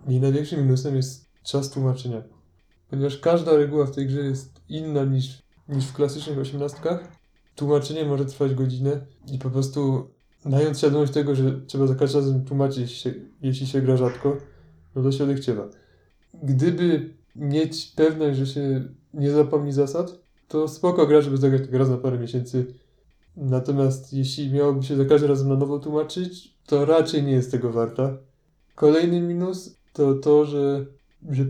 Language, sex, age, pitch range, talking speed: Polish, male, 20-39, 135-150 Hz, 160 wpm